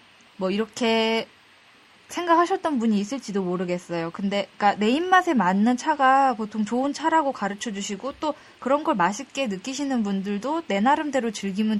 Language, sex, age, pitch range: Korean, female, 20-39, 195-275 Hz